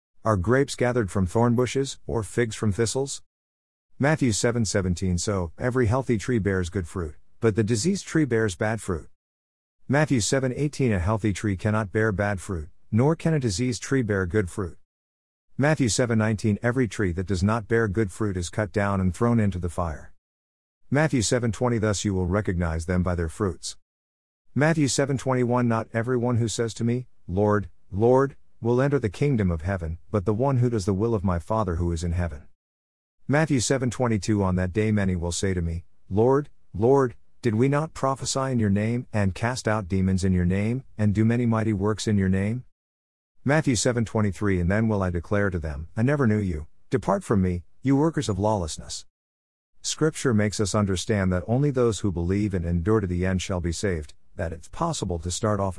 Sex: male